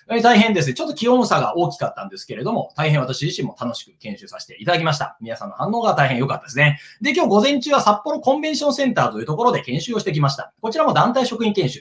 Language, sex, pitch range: Japanese, male, 140-230 Hz